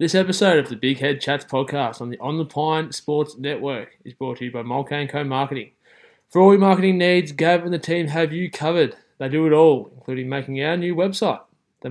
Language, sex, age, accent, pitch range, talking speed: English, male, 20-39, Australian, 135-165 Hz, 230 wpm